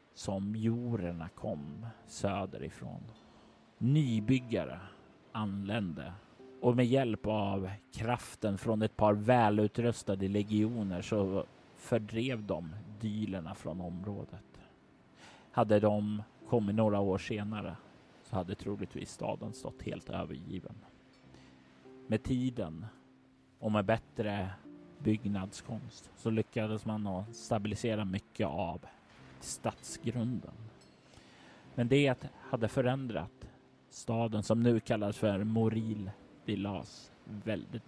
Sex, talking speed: male, 95 wpm